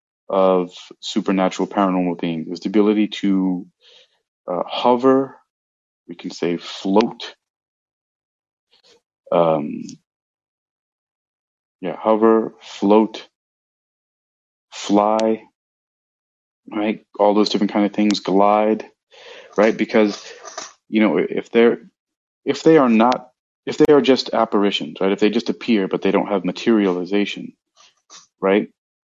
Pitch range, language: 95-115 Hz, English